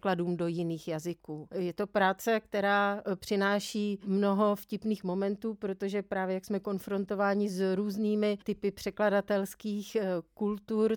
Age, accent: 40-59, native